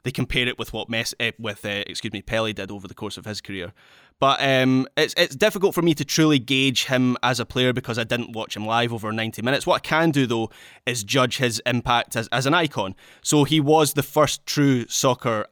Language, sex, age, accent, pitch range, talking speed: English, male, 20-39, British, 115-140 Hz, 235 wpm